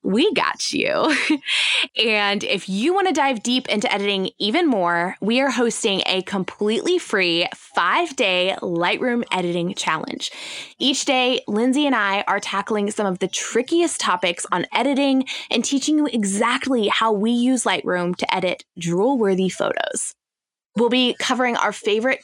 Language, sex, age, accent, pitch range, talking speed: English, female, 20-39, American, 195-265 Hz, 150 wpm